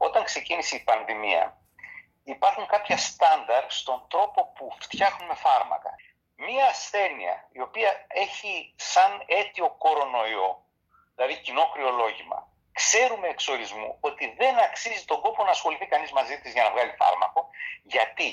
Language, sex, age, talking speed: Greek, male, 50-69, 130 wpm